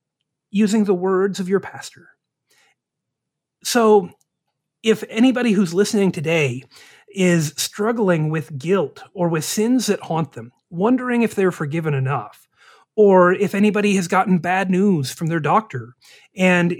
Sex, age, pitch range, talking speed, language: male, 30-49, 165-215 Hz, 135 wpm, English